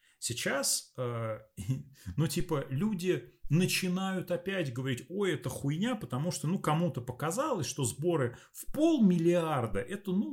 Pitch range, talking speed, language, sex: 110-155 Hz, 120 wpm, Russian, male